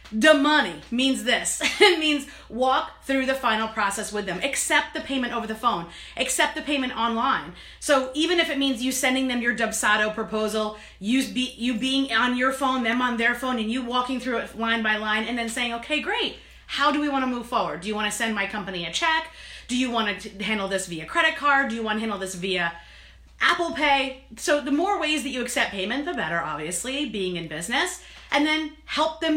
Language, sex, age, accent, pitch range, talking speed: English, female, 30-49, American, 225-295 Hz, 225 wpm